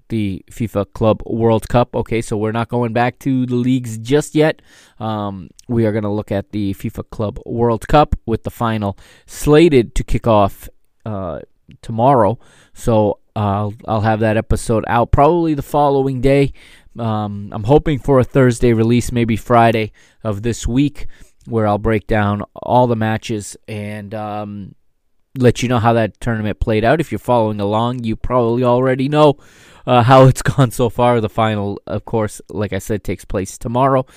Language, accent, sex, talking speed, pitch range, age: English, American, male, 175 wpm, 105-125 Hz, 20-39